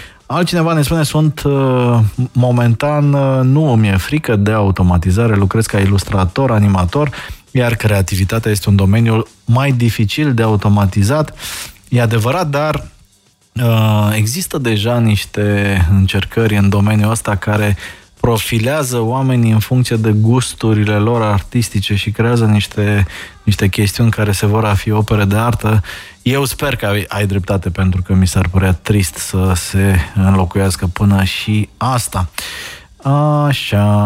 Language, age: Romanian, 20-39